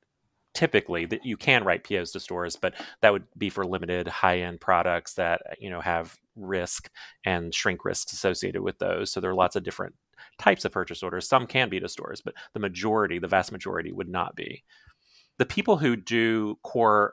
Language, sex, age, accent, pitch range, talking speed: English, male, 30-49, American, 95-120 Hz, 195 wpm